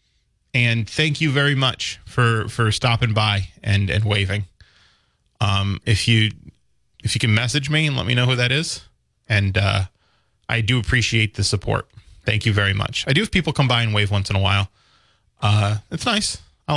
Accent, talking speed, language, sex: American, 195 wpm, English, male